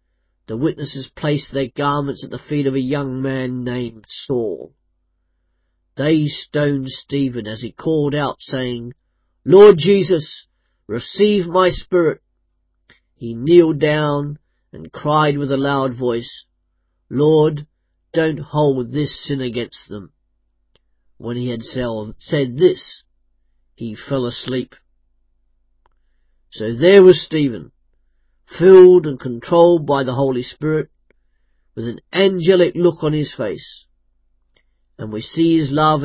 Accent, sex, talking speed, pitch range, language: British, male, 125 wpm, 115-155 Hz, English